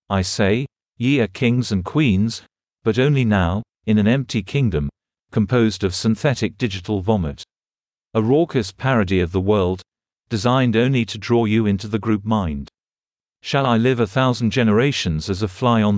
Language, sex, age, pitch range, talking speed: English, male, 40-59, 100-125 Hz, 165 wpm